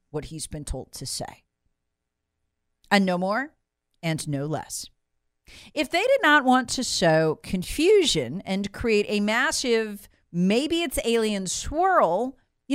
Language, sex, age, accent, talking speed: English, female, 40-59, American, 125 wpm